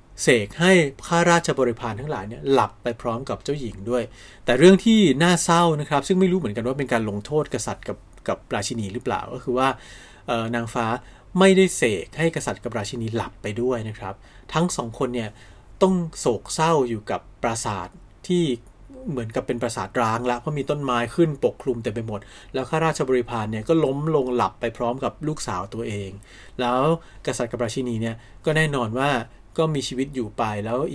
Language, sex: Thai, male